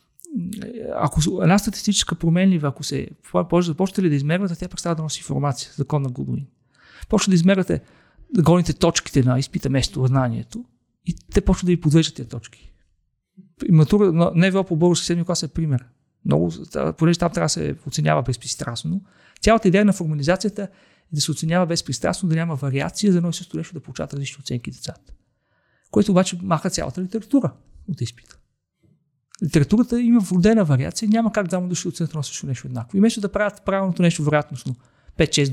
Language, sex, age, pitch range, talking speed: Bulgarian, male, 40-59, 140-190 Hz, 180 wpm